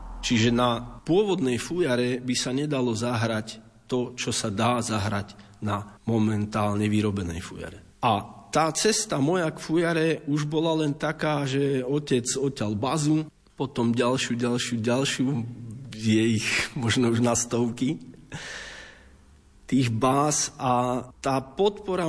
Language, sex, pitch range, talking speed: Slovak, male, 115-155 Hz, 120 wpm